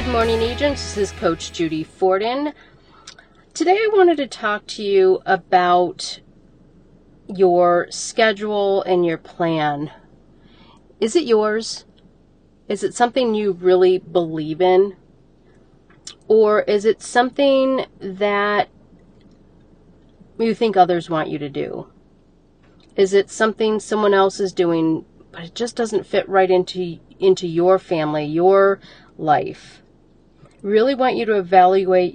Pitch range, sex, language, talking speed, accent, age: 175-205 Hz, female, English, 125 wpm, American, 40-59